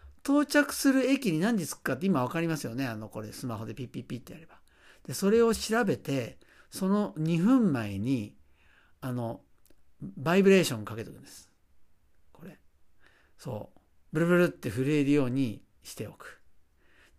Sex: male